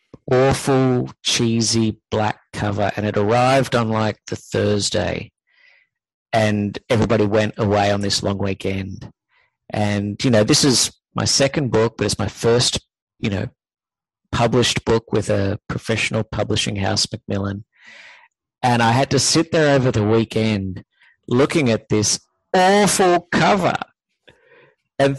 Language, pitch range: English, 105-140 Hz